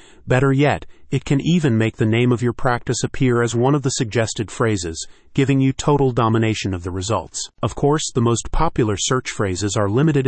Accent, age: American, 30-49